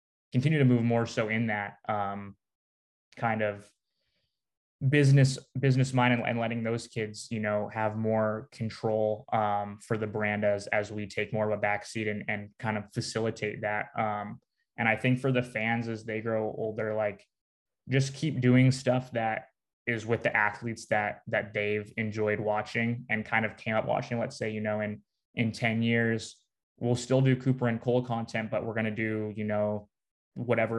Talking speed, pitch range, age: 185 wpm, 105-115 Hz, 20-39